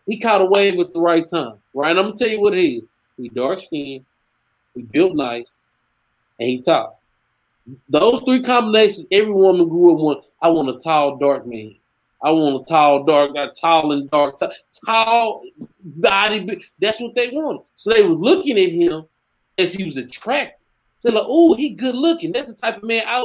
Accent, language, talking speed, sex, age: American, English, 195 wpm, male, 20-39